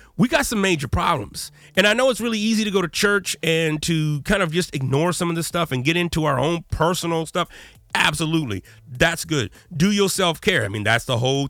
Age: 30-49